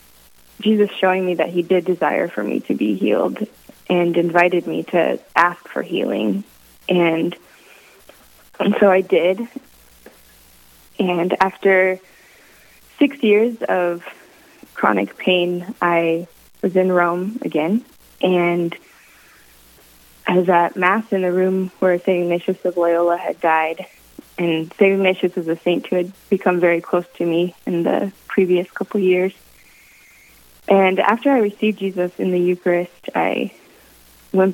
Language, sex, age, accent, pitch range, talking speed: English, female, 20-39, American, 165-190 Hz, 135 wpm